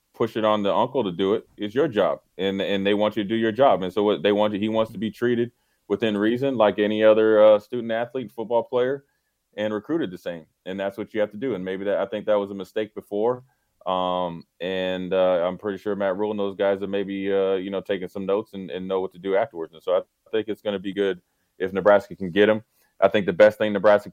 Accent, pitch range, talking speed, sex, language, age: American, 95-110 Hz, 270 wpm, male, English, 30-49